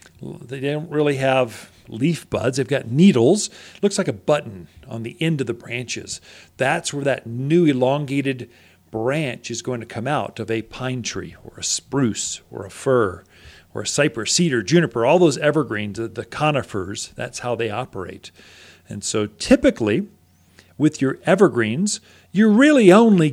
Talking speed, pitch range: 160 wpm, 115-170 Hz